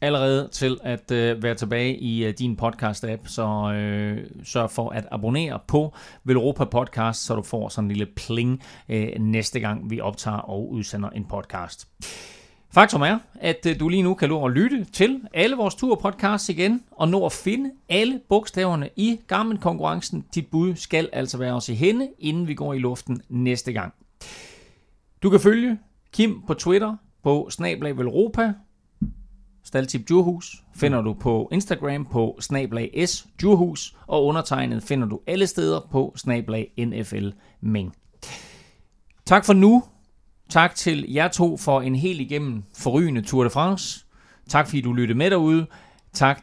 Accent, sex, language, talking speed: native, male, Danish, 160 wpm